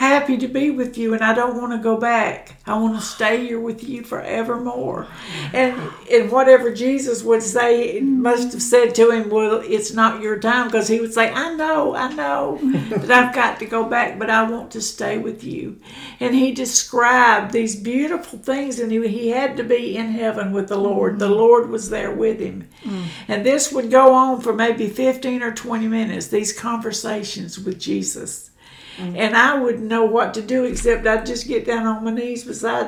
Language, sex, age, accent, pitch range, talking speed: English, female, 60-79, American, 215-245 Hz, 205 wpm